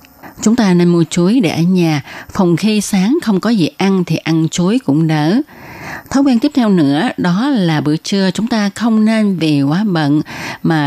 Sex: female